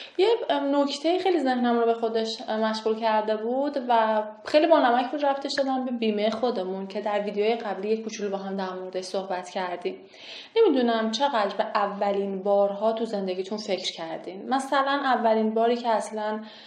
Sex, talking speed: female, 160 wpm